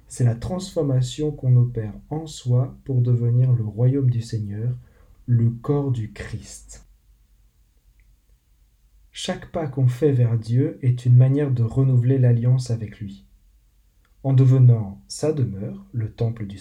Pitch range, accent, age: 115-135 Hz, French, 40-59